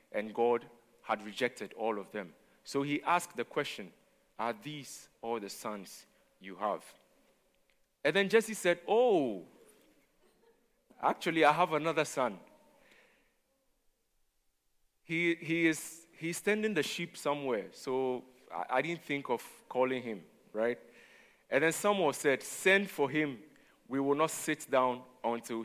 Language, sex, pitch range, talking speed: English, male, 115-155 Hz, 140 wpm